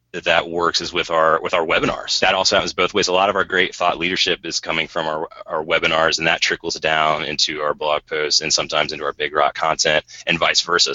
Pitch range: 80-105 Hz